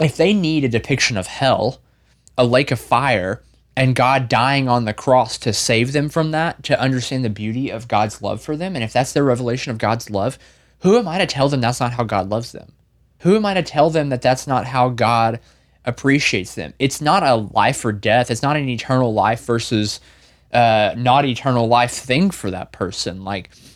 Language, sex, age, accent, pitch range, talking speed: English, male, 20-39, American, 115-145 Hz, 215 wpm